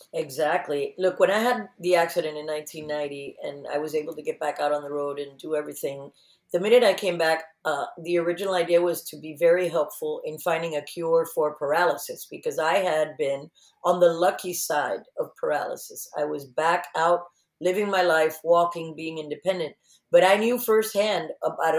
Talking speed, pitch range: 185 wpm, 155-185 Hz